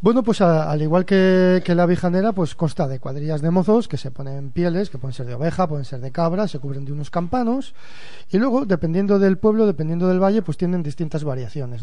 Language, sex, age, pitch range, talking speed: Spanish, male, 40-59, 145-185 Hz, 225 wpm